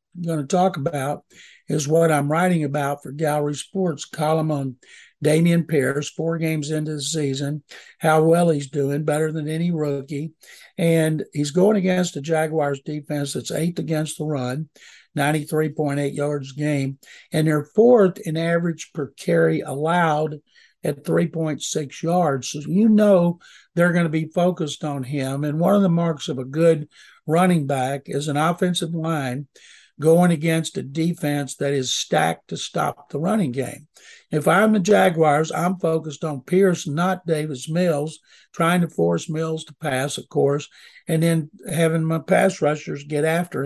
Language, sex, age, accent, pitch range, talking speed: English, male, 60-79, American, 145-170 Hz, 160 wpm